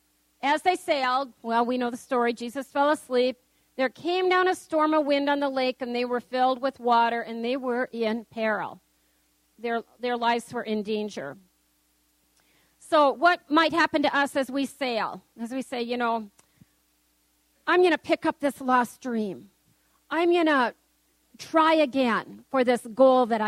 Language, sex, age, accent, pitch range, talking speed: English, female, 40-59, American, 220-275 Hz, 175 wpm